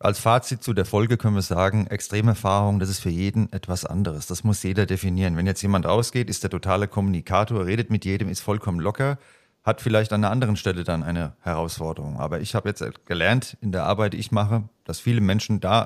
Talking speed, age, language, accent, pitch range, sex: 220 wpm, 40-59, German, German, 95-115 Hz, male